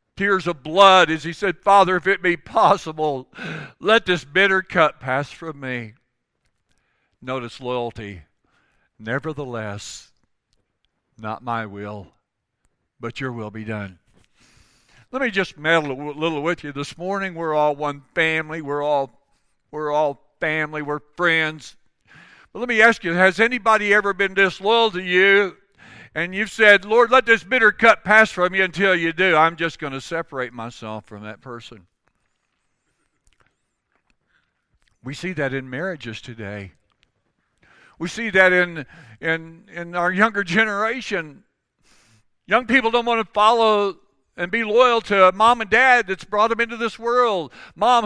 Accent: American